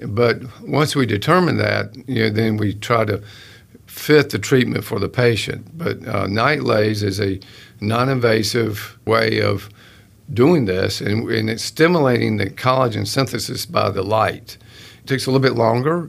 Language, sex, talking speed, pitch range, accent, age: English, male, 165 wpm, 105-120 Hz, American, 50-69